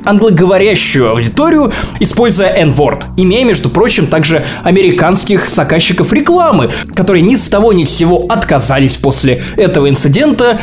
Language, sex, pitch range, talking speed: Russian, male, 145-220 Hz, 125 wpm